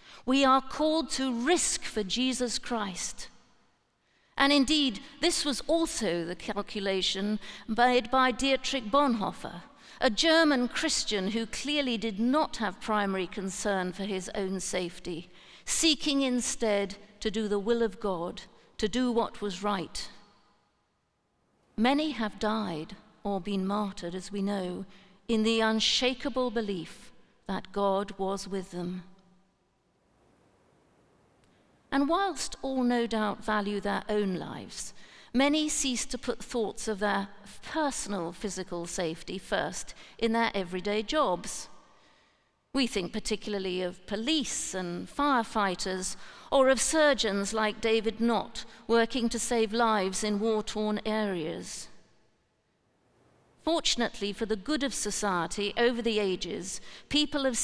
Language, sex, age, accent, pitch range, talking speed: English, female, 50-69, British, 200-255 Hz, 125 wpm